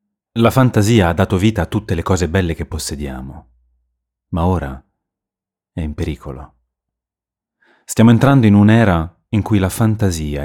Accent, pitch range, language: native, 80-115 Hz, Italian